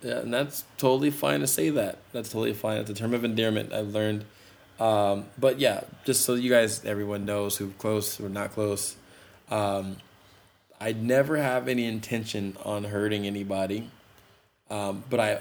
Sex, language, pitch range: male, English, 100-110 Hz